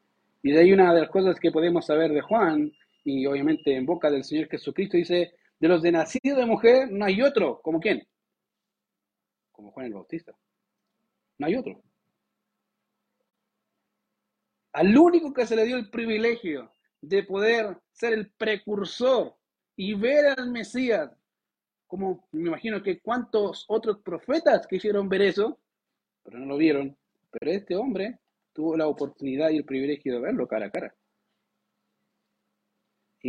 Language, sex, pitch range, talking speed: Spanish, male, 145-200 Hz, 150 wpm